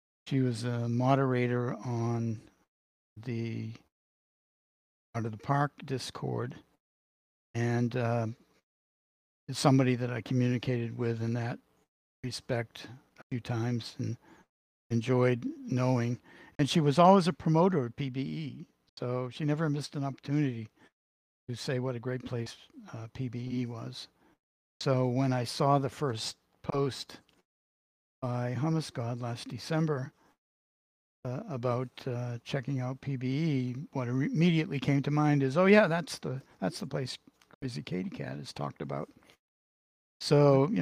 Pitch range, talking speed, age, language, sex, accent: 120-140 Hz, 130 wpm, 60-79, English, male, American